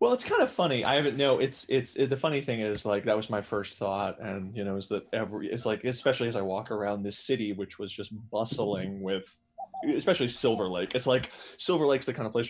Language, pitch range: English, 100-125 Hz